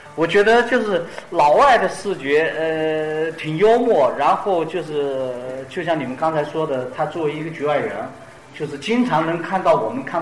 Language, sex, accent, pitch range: Chinese, male, native, 135-175 Hz